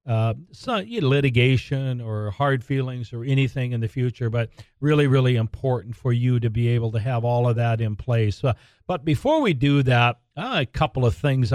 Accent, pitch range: American, 115-130 Hz